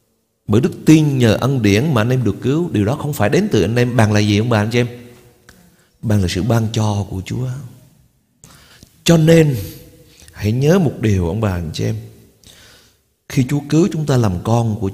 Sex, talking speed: male, 215 wpm